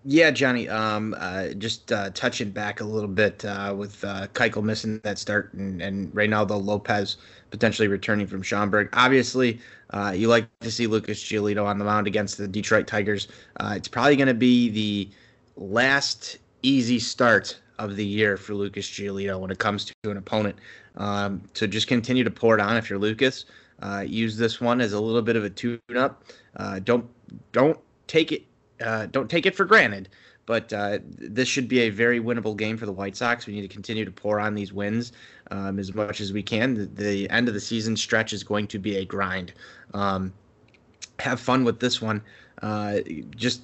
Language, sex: English, male